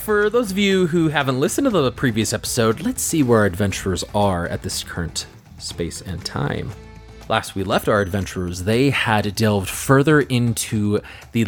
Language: English